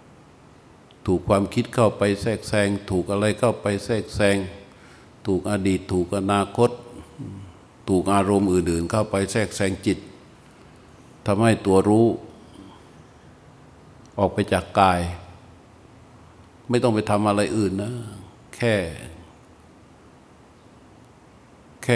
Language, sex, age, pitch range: Thai, male, 60-79, 95-110 Hz